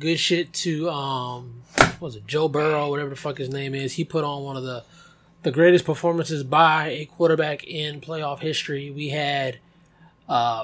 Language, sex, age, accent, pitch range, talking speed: English, male, 20-39, American, 140-170 Hz, 185 wpm